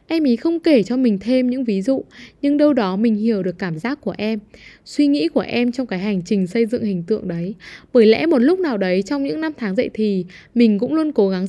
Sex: female